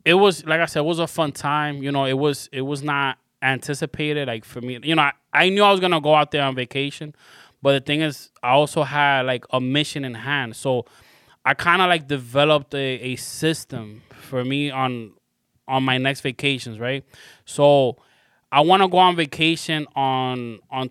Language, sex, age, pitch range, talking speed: English, male, 20-39, 130-150 Hz, 200 wpm